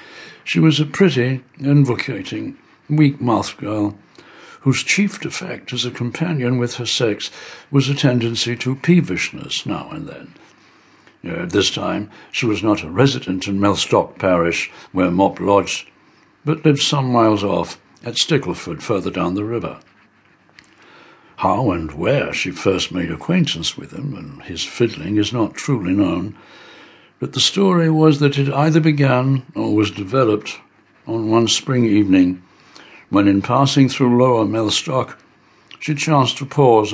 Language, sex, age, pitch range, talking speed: English, male, 60-79, 100-130 Hz, 145 wpm